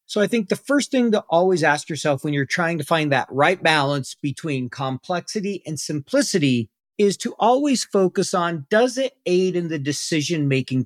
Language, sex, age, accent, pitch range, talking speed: English, male, 40-59, American, 125-190 Hz, 180 wpm